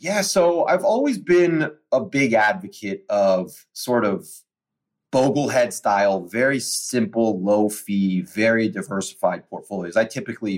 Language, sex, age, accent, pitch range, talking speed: English, male, 30-49, American, 95-115 Hz, 125 wpm